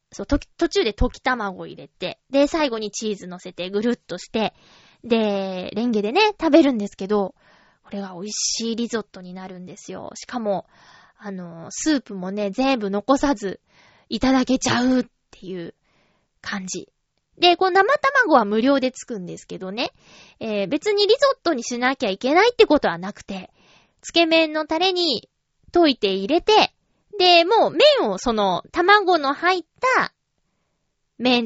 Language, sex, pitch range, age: Japanese, female, 205-325 Hz, 20-39